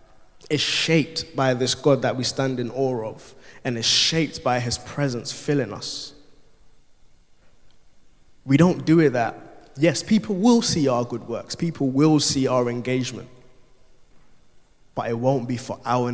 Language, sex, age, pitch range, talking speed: English, male, 20-39, 115-130 Hz, 155 wpm